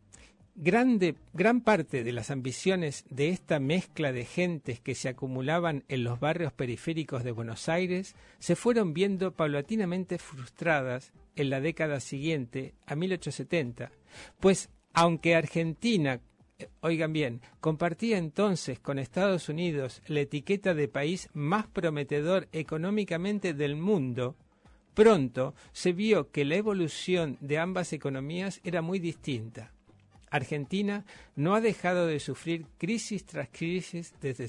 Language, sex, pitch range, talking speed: Spanish, male, 135-180 Hz, 125 wpm